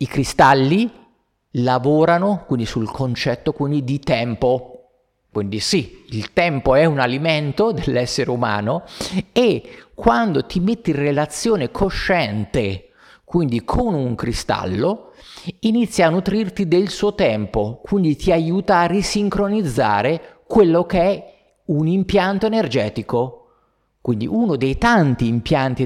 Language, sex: Italian, male